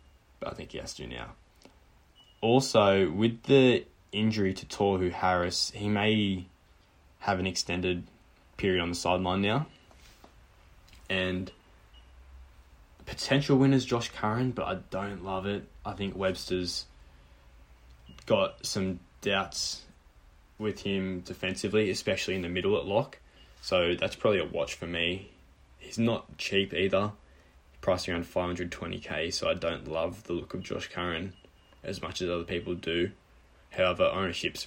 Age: 10-29